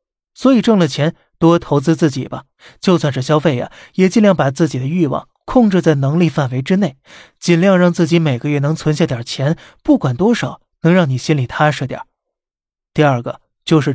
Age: 20-39